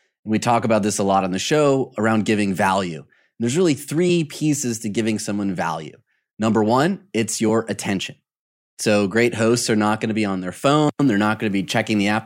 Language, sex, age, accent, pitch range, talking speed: English, male, 30-49, American, 110-145 Hz, 215 wpm